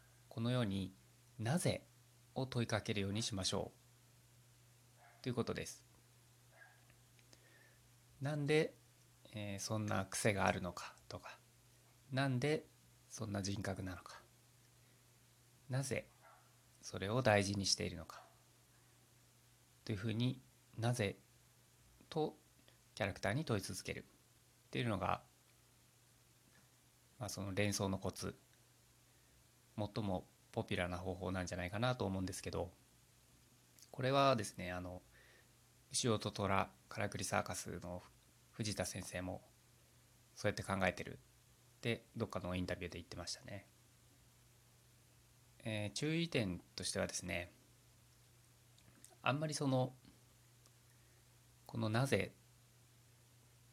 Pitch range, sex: 100-120 Hz, male